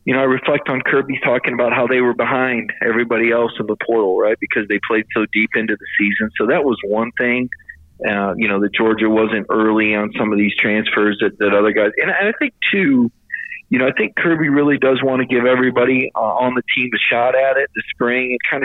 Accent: American